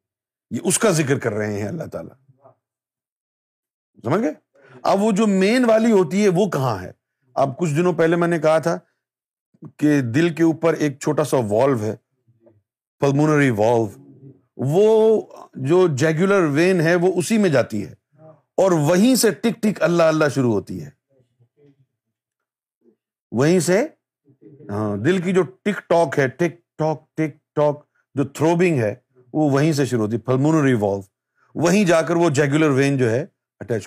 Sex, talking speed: male, 150 wpm